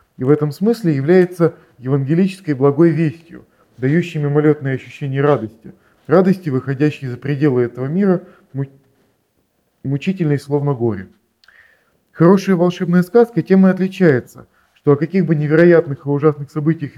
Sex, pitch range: male, 125-165 Hz